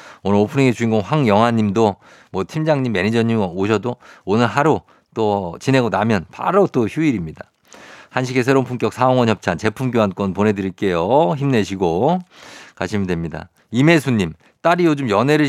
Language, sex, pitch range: Korean, male, 105-130 Hz